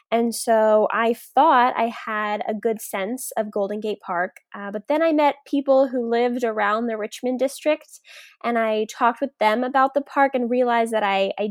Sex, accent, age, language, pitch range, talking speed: female, American, 10-29, English, 210-255 Hz, 200 wpm